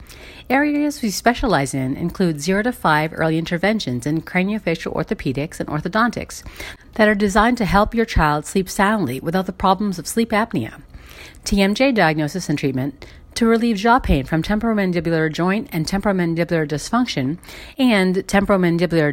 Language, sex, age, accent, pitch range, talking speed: English, female, 40-59, American, 155-220 Hz, 145 wpm